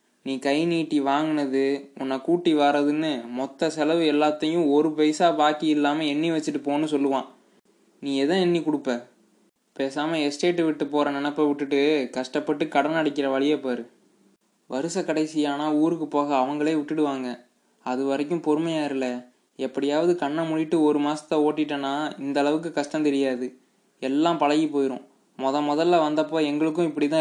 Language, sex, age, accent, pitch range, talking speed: Tamil, male, 20-39, native, 135-155 Hz, 130 wpm